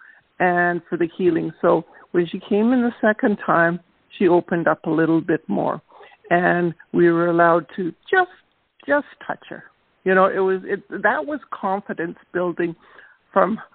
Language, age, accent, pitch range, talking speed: English, 50-69, American, 170-210 Hz, 165 wpm